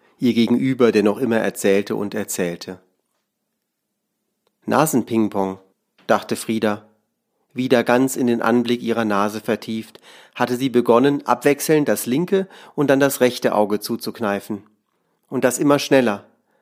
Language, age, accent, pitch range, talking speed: German, 40-59, German, 110-135 Hz, 125 wpm